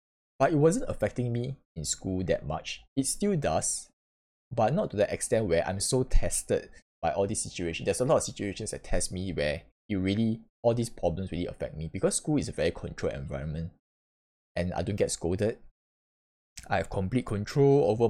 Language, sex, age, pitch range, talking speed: English, male, 10-29, 80-105 Hz, 195 wpm